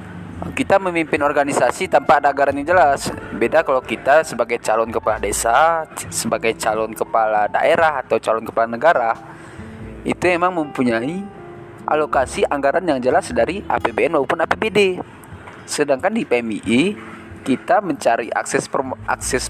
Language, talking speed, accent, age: Indonesian, 125 wpm, native, 20-39